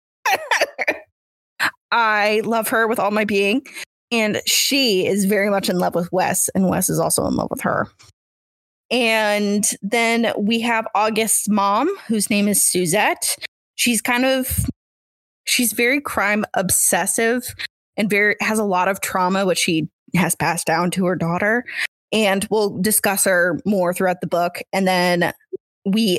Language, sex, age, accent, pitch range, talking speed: English, female, 20-39, American, 180-225 Hz, 155 wpm